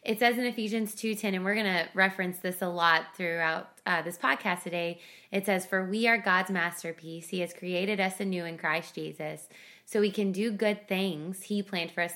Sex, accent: female, American